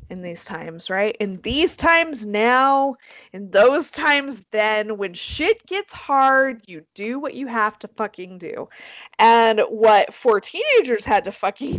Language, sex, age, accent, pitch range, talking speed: English, female, 30-49, American, 210-310 Hz, 160 wpm